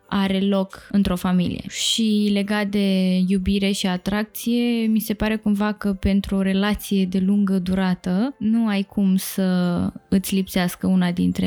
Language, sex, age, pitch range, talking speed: Romanian, female, 20-39, 190-225 Hz, 150 wpm